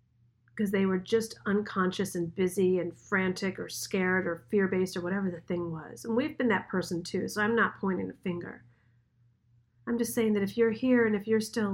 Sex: female